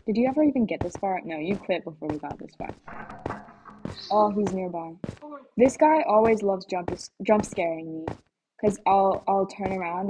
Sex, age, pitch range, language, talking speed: female, 10-29, 185-235 Hz, English, 185 wpm